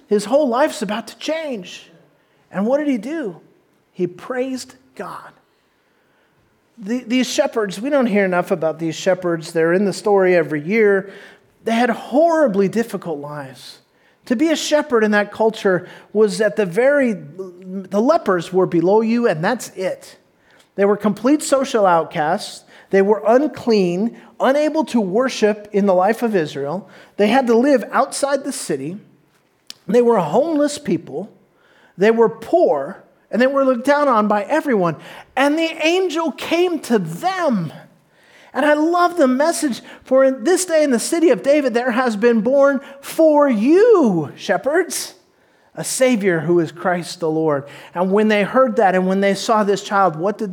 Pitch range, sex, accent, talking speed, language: 185-270 Hz, male, American, 165 wpm, English